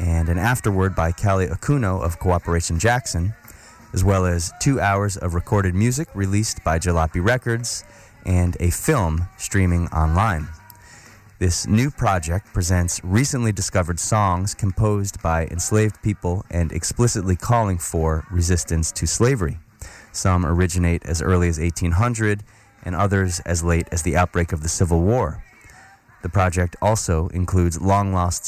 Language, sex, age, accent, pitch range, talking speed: English, male, 30-49, American, 85-105 Hz, 140 wpm